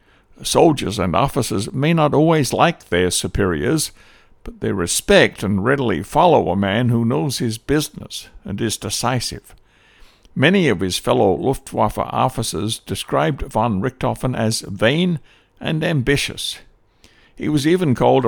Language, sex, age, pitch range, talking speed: English, male, 60-79, 95-140 Hz, 135 wpm